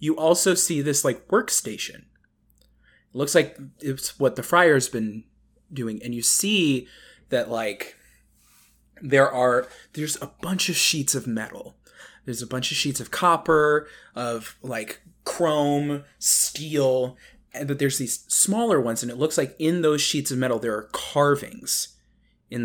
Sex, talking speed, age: male, 160 wpm, 20-39